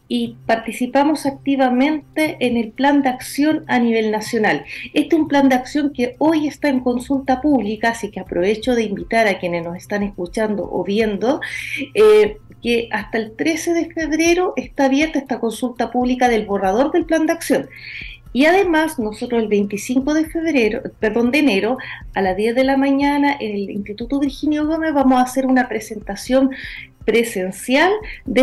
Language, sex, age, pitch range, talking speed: Spanish, female, 40-59, 215-285 Hz, 170 wpm